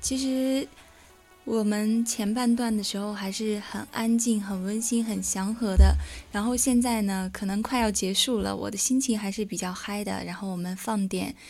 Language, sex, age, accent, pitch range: Chinese, female, 20-39, native, 180-220 Hz